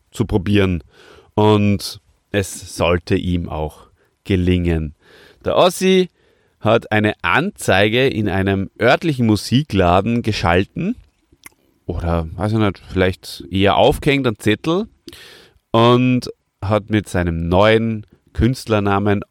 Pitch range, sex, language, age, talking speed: 90-110 Hz, male, German, 30-49, 100 wpm